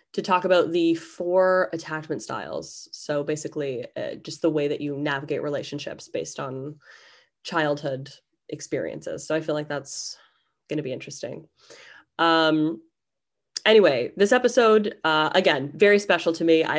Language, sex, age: English, female, 20-39